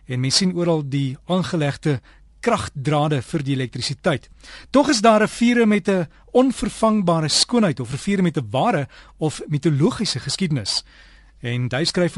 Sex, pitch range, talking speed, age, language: male, 140-190 Hz, 155 wpm, 40-59, Dutch